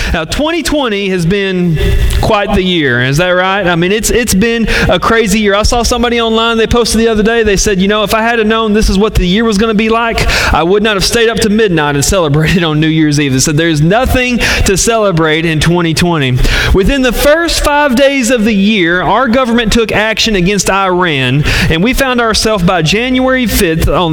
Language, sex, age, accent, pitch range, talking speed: English, male, 30-49, American, 150-225 Hz, 220 wpm